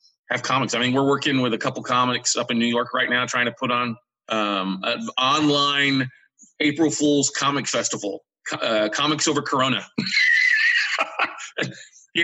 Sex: male